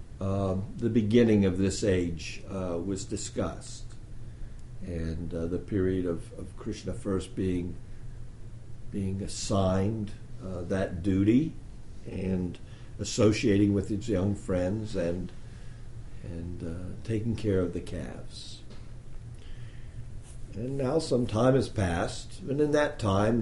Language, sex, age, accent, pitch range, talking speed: English, male, 60-79, American, 95-115 Hz, 120 wpm